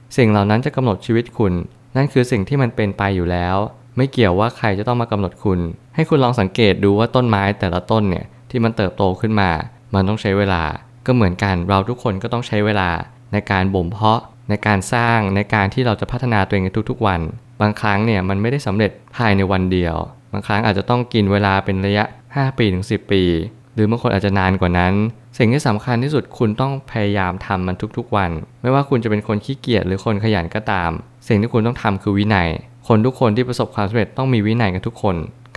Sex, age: male, 20-39